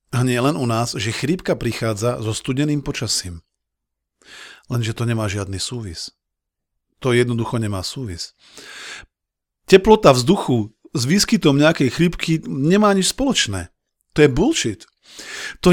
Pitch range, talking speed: 120-165 Hz, 125 wpm